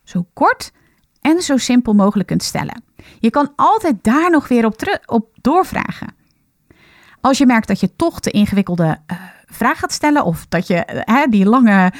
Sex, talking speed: female, 175 wpm